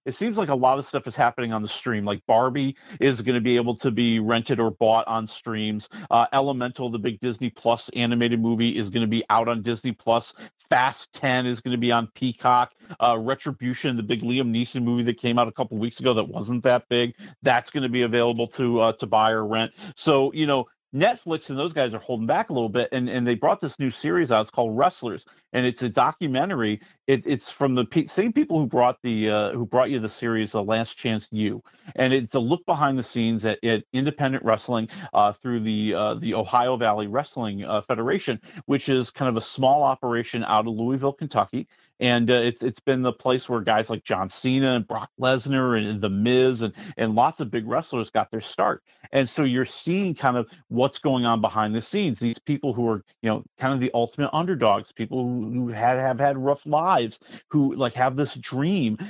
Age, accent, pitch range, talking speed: 40-59, American, 115-135 Hz, 225 wpm